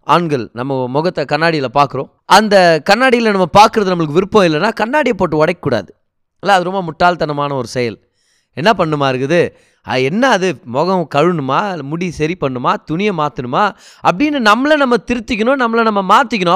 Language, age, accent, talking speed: Tamil, 20-39, native, 145 wpm